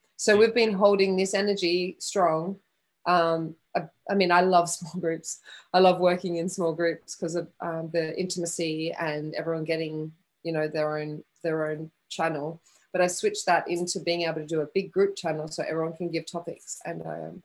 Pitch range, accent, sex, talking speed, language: 165-195 Hz, Australian, female, 195 wpm, English